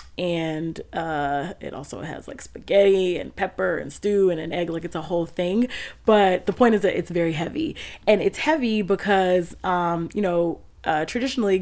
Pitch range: 170-200 Hz